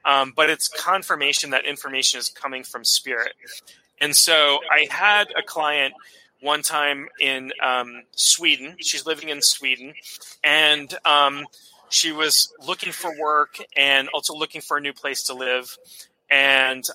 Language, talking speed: English, 150 wpm